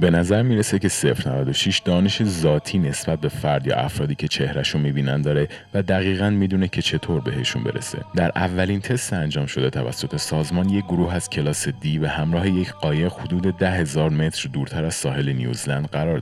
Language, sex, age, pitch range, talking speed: Persian, male, 30-49, 70-95 Hz, 180 wpm